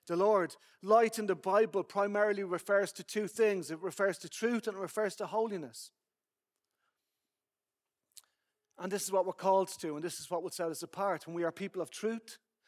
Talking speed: 195 wpm